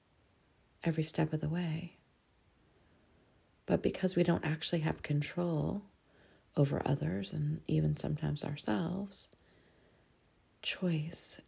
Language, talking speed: English, 100 wpm